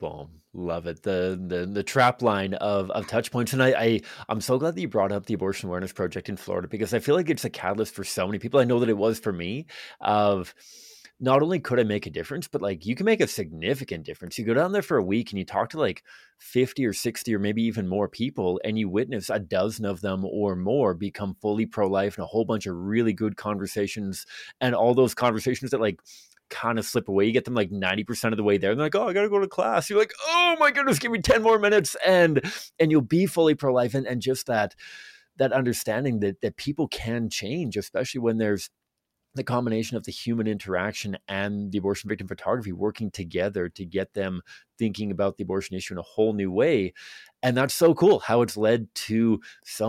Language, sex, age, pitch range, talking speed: English, male, 20-39, 100-125 Hz, 235 wpm